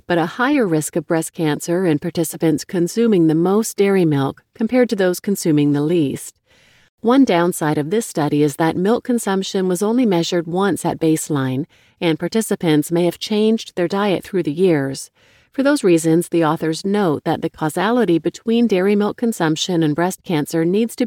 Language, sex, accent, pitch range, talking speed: English, female, American, 160-210 Hz, 180 wpm